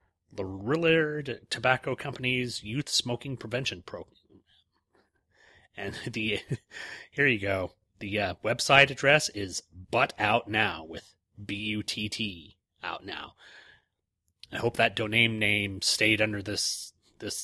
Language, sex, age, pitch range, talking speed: English, male, 30-49, 100-135 Hz, 115 wpm